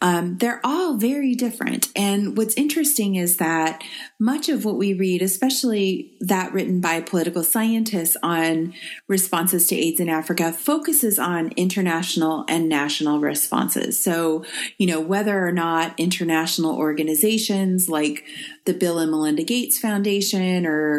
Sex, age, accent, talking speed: female, 30-49, American, 140 wpm